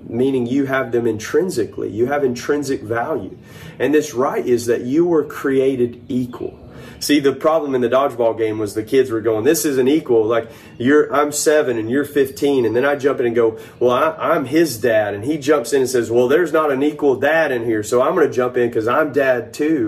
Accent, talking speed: American, 230 wpm